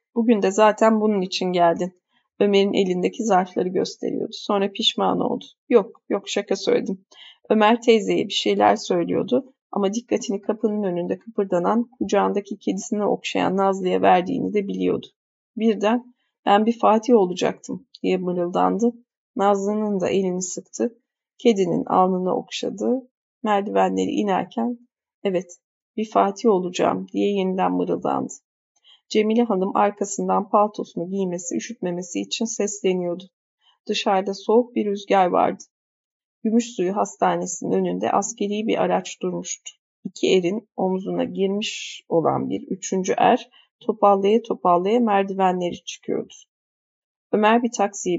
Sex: female